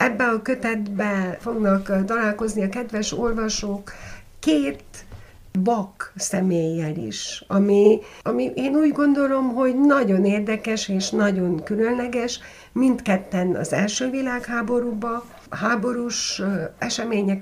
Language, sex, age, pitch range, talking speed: Hungarian, female, 60-79, 180-235 Hz, 105 wpm